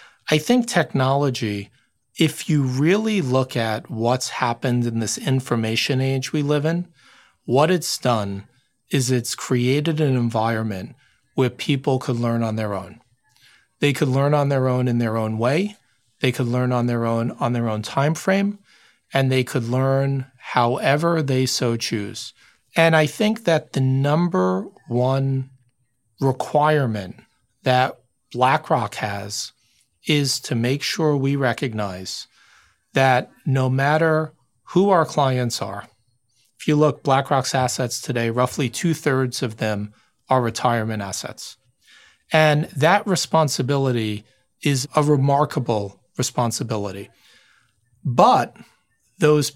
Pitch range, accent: 120-155 Hz, American